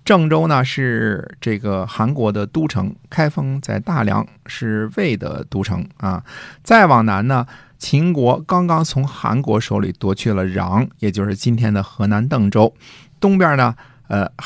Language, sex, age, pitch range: Chinese, male, 50-69, 100-130 Hz